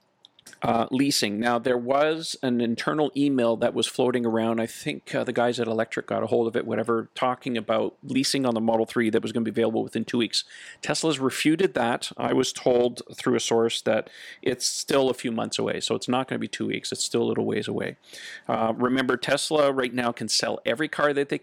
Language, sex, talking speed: English, male, 230 wpm